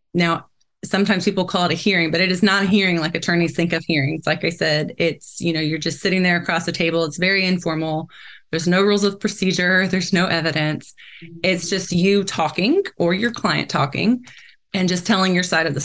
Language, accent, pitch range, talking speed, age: English, American, 165-195 Hz, 215 wpm, 20-39